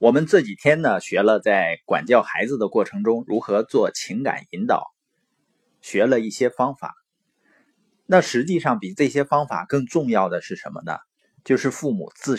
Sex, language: male, Chinese